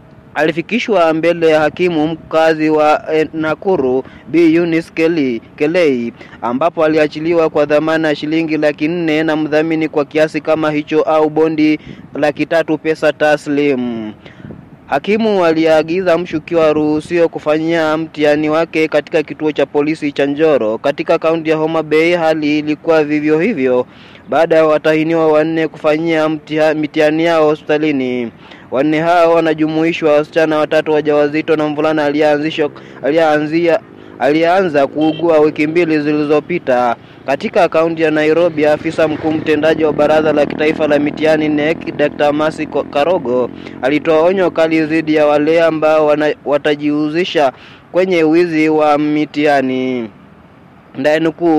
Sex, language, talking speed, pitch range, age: male, Swahili, 120 wpm, 150-160 Hz, 20-39